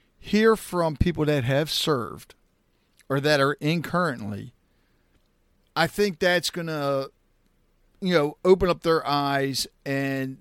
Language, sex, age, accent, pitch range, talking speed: English, male, 50-69, American, 130-170 Hz, 135 wpm